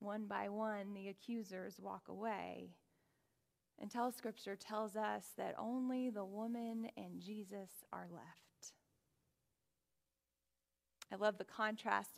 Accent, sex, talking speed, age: American, female, 115 wpm, 20-39